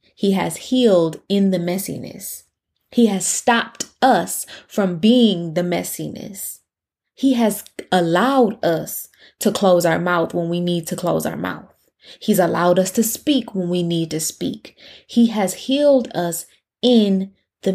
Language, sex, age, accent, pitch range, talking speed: English, female, 20-39, American, 165-195 Hz, 150 wpm